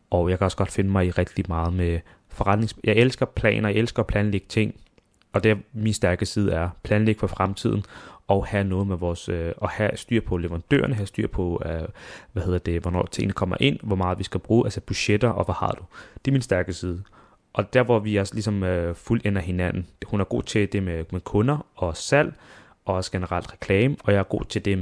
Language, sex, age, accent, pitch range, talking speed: Danish, male, 30-49, native, 95-110 Hz, 225 wpm